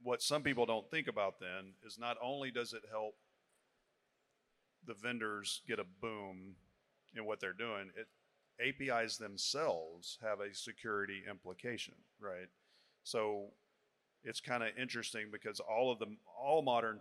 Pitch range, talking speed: 100-115 Hz, 145 wpm